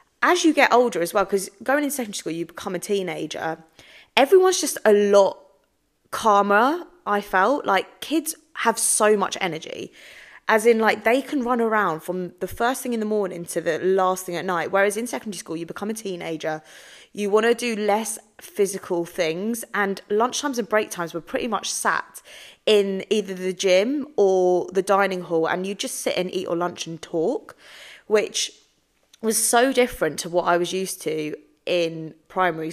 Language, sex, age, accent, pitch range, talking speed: English, female, 20-39, British, 175-225 Hz, 185 wpm